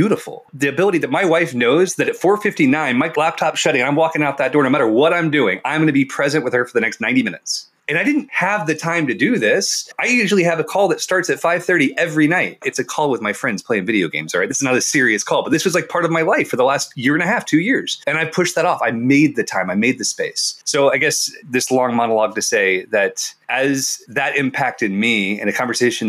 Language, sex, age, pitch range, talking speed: English, male, 30-49, 120-175 Hz, 275 wpm